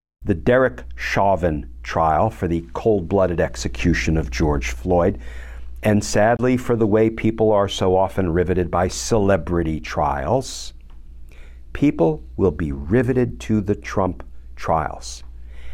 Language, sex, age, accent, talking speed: English, male, 50-69, American, 120 wpm